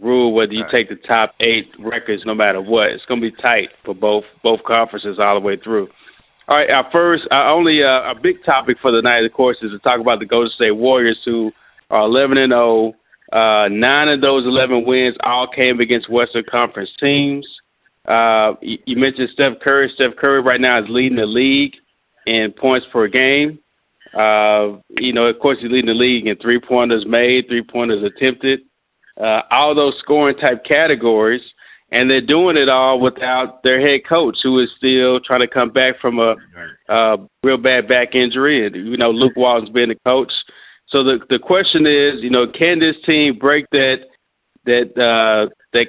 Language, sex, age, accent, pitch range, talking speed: English, male, 30-49, American, 115-135 Hz, 195 wpm